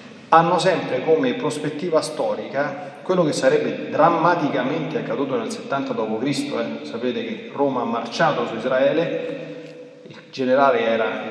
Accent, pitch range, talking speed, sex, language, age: native, 125-180 Hz, 135 wpm, male, Italian, 30-49